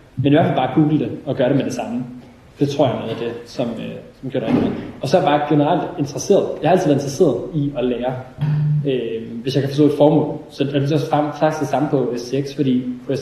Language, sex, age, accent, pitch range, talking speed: Danish, male, 20-39, native, 125-155 Hz, 255 wpm